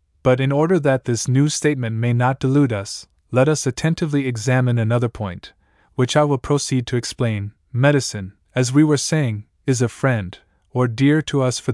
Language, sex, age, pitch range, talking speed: English, male, 20-39, 105-135 Hz, 185 wpm